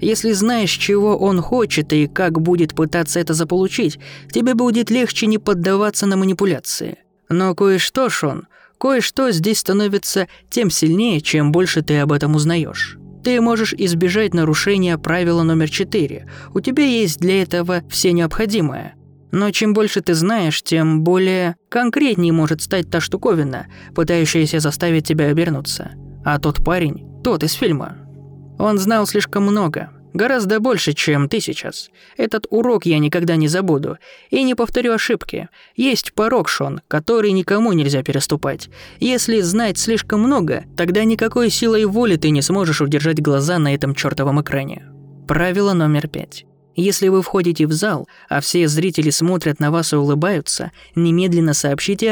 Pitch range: 155-210 Hz